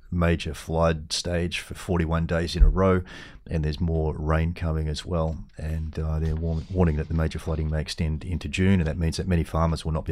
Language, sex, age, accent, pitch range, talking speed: English, male, 30-49, Australian, 75-90 Hz, 220 wpm